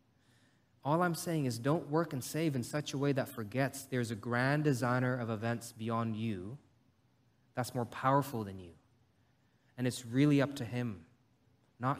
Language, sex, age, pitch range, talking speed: English, male, 20-39, 120-145 Hz, 170 wpm